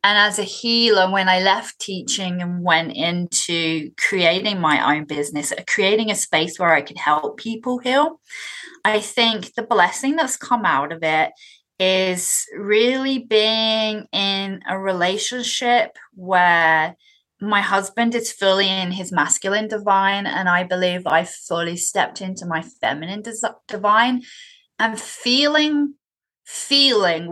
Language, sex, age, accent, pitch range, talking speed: English, female, 20-39, British, 180-225 Hz, 135 wpm